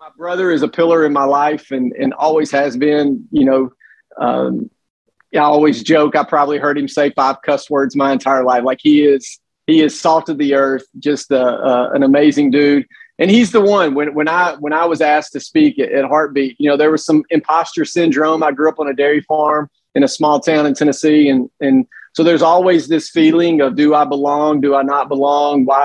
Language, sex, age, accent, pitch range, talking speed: English, male, 30-49, American, 140-170 Hz, 225 wpm